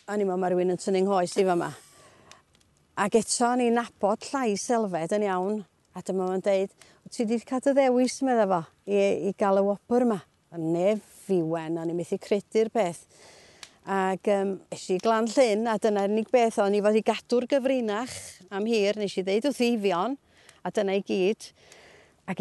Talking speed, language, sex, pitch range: 165 wpm, English, female, 190-230 Hz